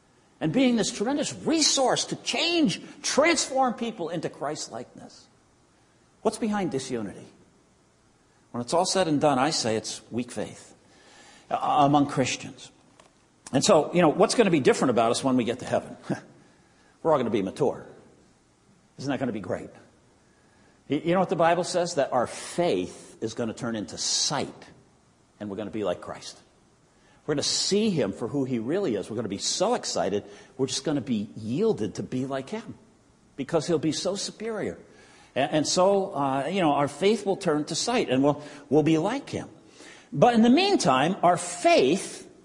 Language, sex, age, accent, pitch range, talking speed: English, male, 50-69, American, 140-230 Hz, 185 wpm